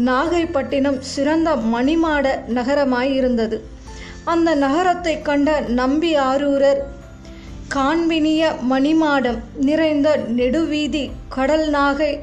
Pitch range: 260-310 Hz